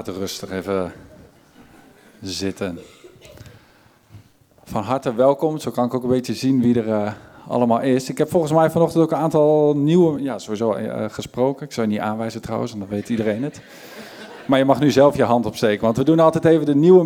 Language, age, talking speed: Dutch, 50-69, 195 wpm